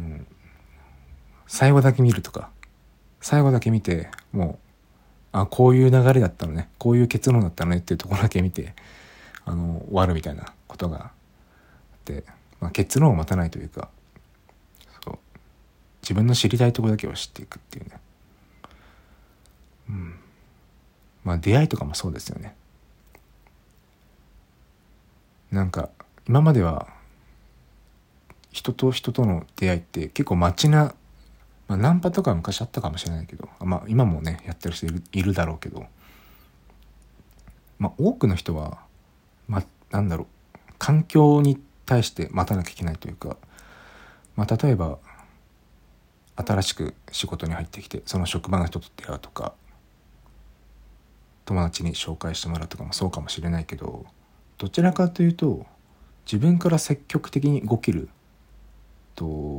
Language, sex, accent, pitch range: Japanese, male, native, 80-110 Hz